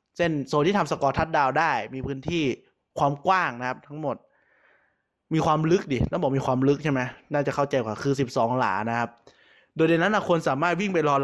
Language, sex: Thai, male